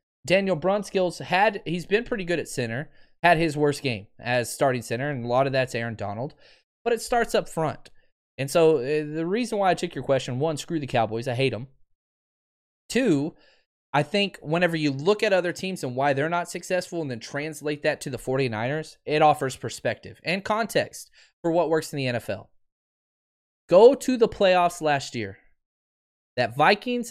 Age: 20-39